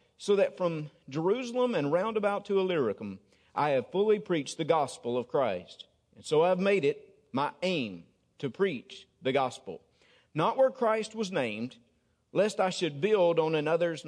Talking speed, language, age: 160 wpm, English, 50-69